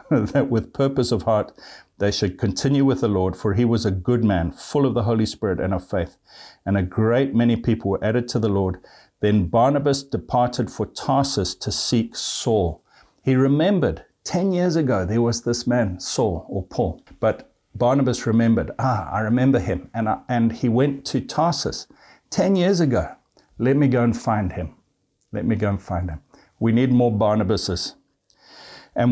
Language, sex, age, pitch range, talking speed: English, male, 60-79, 100-130 Hz, 185 wpm